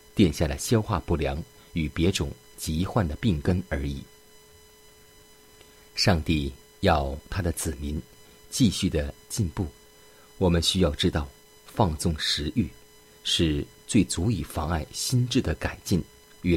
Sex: male